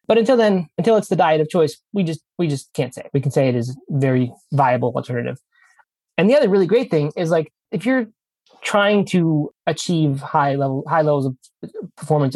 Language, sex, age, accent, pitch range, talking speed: English, male, 20-39, American, 140-190 Hz, 215 wpm